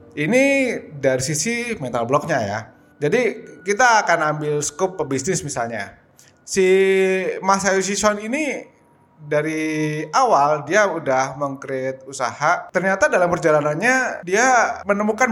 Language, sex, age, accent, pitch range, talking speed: Indonesian, male, 20-39, native, 125-175 Hz, 110 wpm